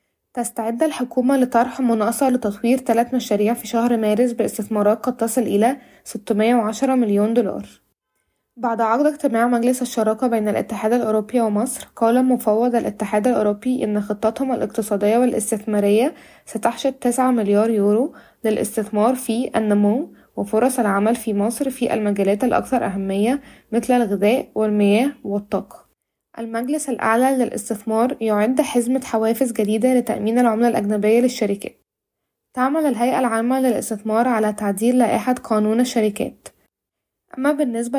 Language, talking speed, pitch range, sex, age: Arabic, 120 wpm, 215-250 Hz, female, 20-39